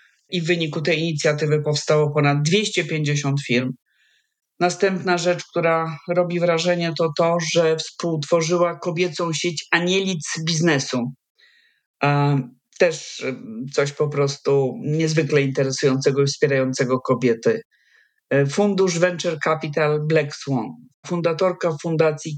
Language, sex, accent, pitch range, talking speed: Polish, male, native, 140-180 Hz, 100 wpm